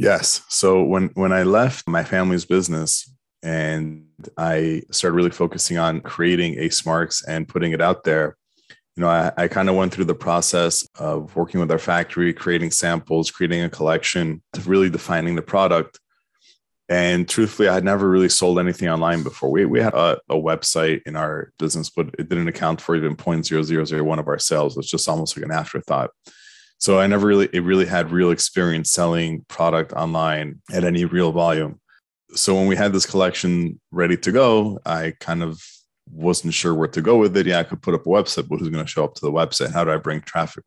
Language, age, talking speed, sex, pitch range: English, 20-39, 210 wpm, male, 80-95 Hz